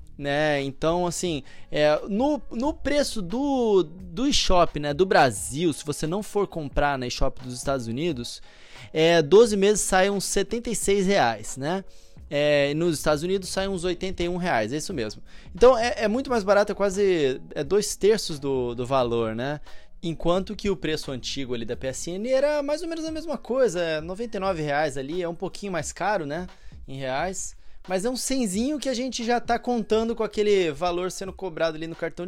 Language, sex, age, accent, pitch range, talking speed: Portuguese, male, 20-39, Brazilian, 150-215 Hz, 180 wpm